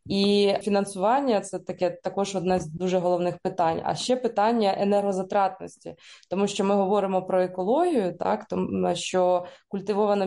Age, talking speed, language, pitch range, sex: 20-39, 140 wpm, Ukrainian, 180-210 Hz, female